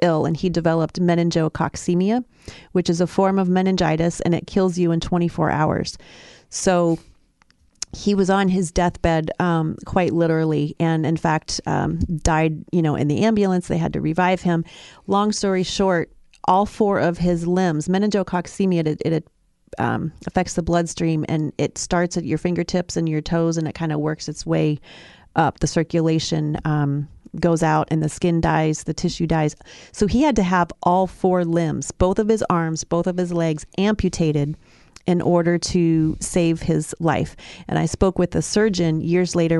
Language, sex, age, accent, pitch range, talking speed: English, female, 30-49, American, 160-180 Hz, 175 wpm